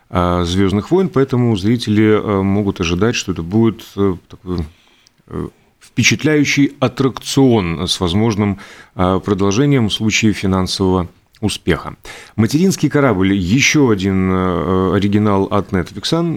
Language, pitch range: Russian, 95-115 Hz